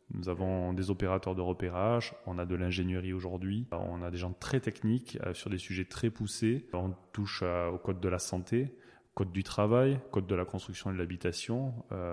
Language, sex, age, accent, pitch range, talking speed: French, male, 20-39, French, 90-110 Hz, 195 wpm